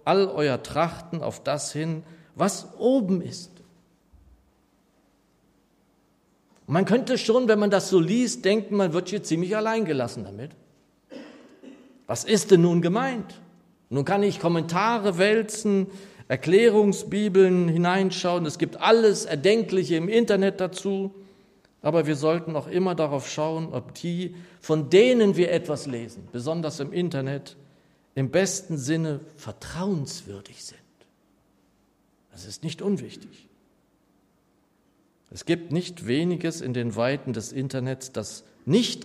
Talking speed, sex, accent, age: 125 wpm, male, German, 50-69